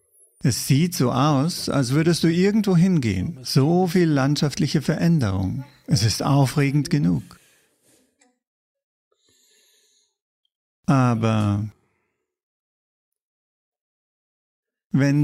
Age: 50-69